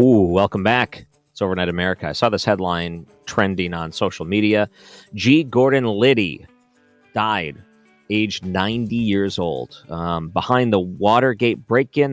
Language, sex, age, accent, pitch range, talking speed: English, male, 40-59, American, 95-120 Hz, 130 wpm